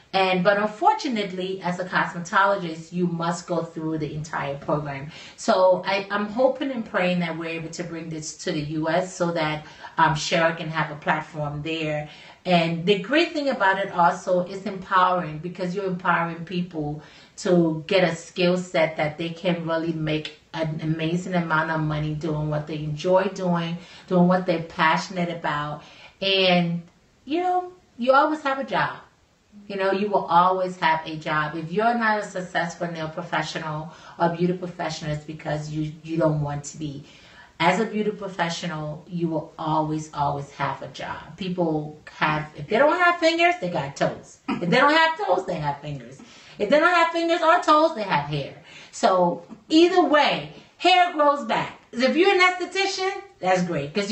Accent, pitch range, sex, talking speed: American, 155-200 Hz, female, 180 wpm